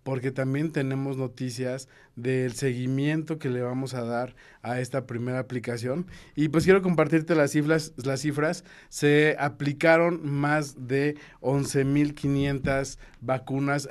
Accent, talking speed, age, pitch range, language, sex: Mexican, 125 wpm, 40-59, 130-155 Hz, Spanish, male